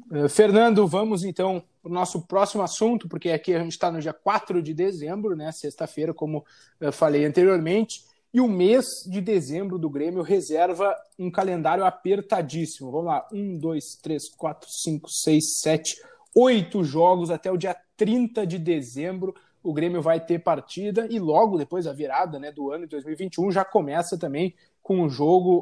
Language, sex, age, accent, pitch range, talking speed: Portuguese, male, 20-39, Brazilian, 165-210 Hz, 170 wpm